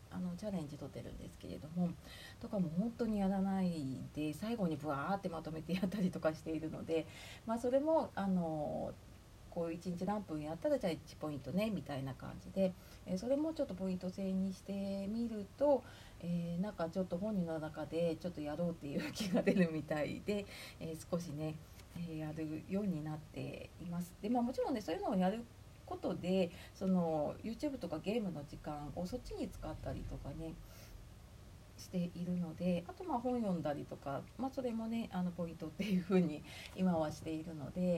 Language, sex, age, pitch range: Japanese, female, 40-59, 155-200 Hz